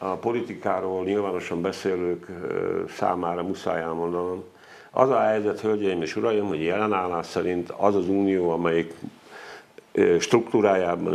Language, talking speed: Hungarian, 115 wpm